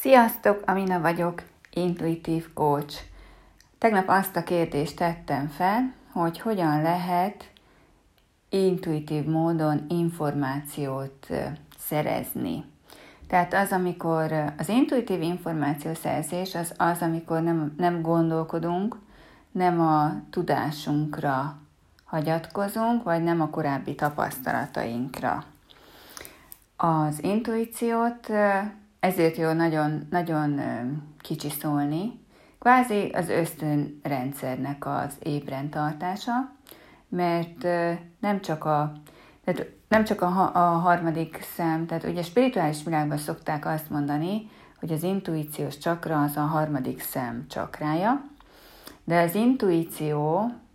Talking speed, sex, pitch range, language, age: 95 wpm, female, 150-185 Hz, Hungarian, 30-49